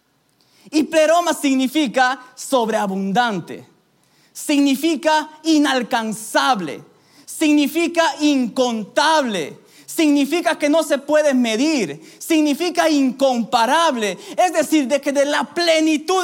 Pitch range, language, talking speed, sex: 230-315 Hz, Spanish, 85 wpm, male